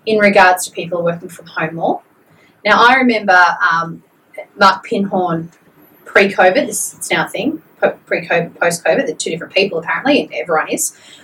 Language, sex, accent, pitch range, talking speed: English, female, Australian, 175-225 Hz, 160 wpm